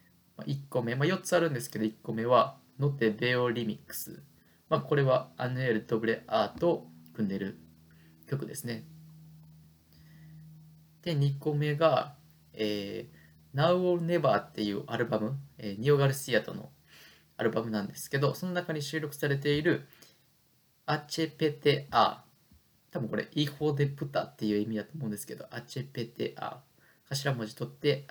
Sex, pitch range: male, 110-150 Hz